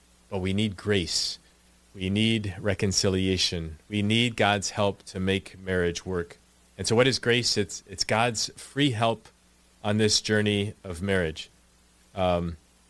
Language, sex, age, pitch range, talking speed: English, male, 30-49, 85-115 Hz, 150 wpm